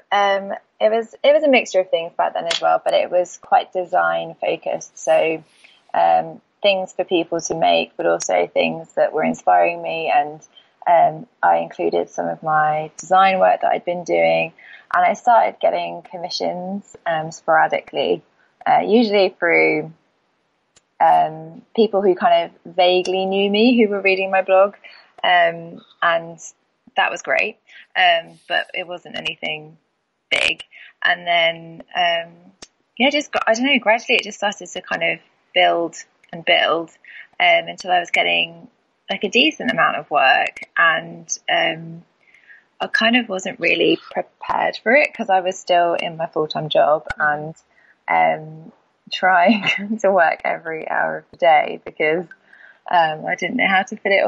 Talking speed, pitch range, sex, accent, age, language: 160 wpm, 155-220 Hz, female, British, 20-39, English